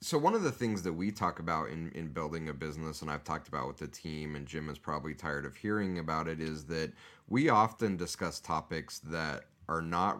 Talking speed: 230 wpm